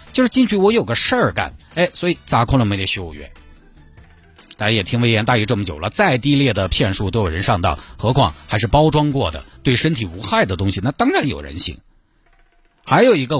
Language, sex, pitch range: Chinese, male, 95-145 Hz